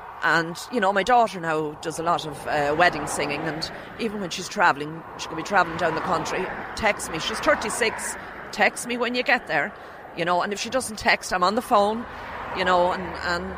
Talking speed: 220 wpm